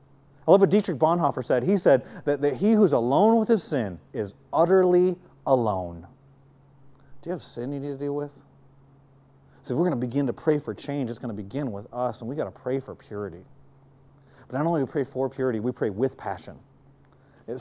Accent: American